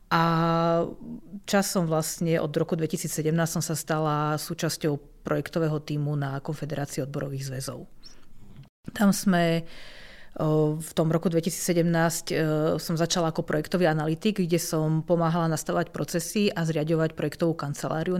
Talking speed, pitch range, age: 120 wpm, 155-175 Hz, 40-59